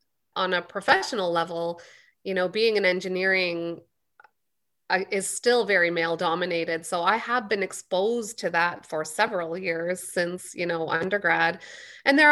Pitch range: 175-215 Hz